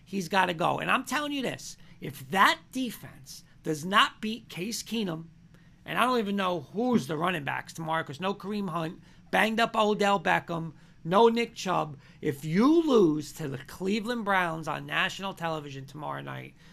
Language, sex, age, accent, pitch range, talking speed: English, male, 40-59, American, 165-225 Hz, 180 wpm